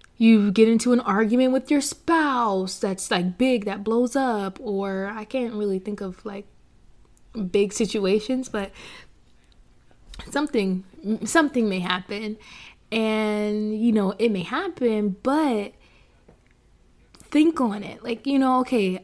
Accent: American